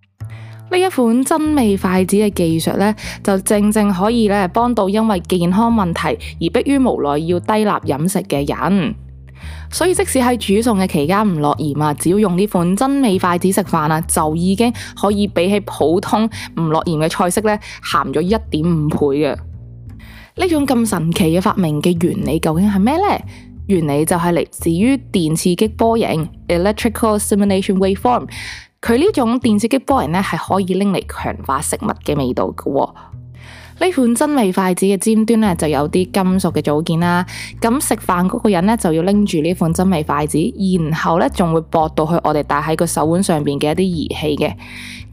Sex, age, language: female, 20-39, Chinese